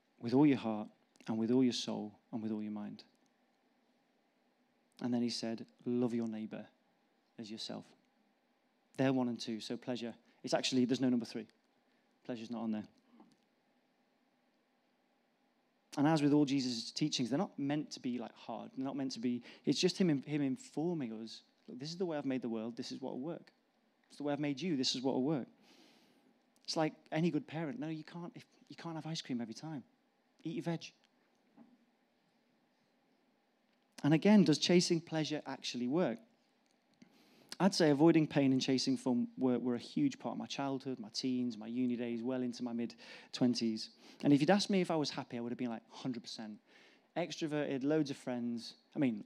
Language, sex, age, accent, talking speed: English, male, 30-49, British, 195 wpm